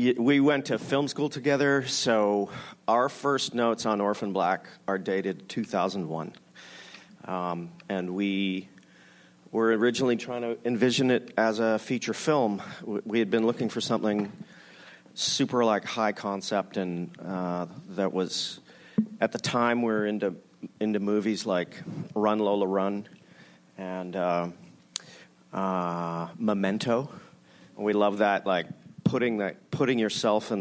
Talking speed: 135 wpm